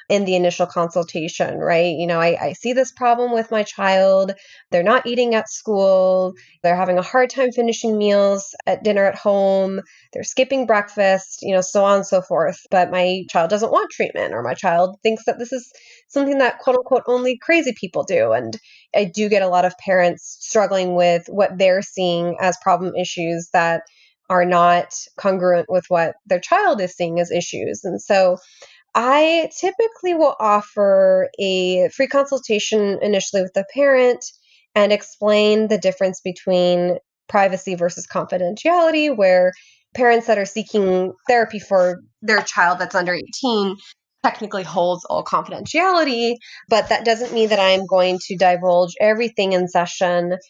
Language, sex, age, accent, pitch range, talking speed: English, female, 20-39, American, 180-230 Hz, 165 wpm